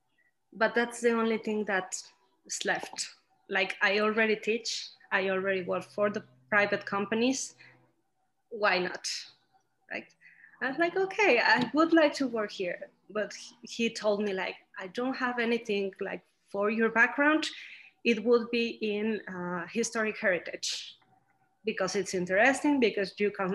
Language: English